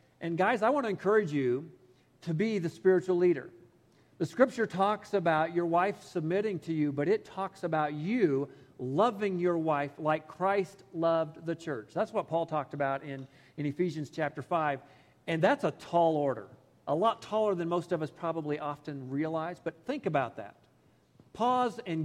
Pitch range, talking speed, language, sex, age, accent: 145-195 Hz, 175 wpm, English, male, 50-69, American